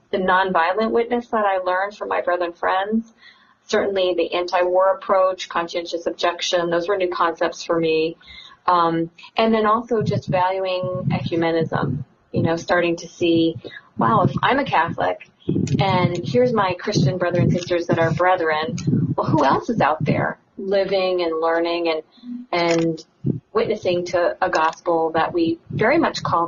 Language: English